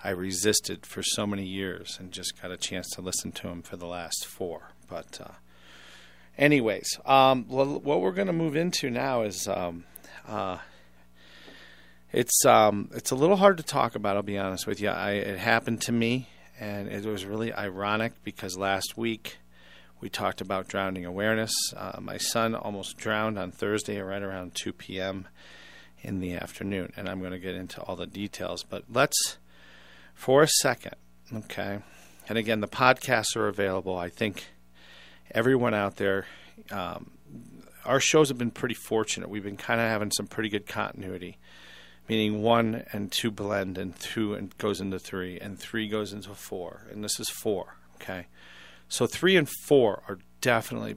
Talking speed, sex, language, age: 175 wpm, male, English, 40-59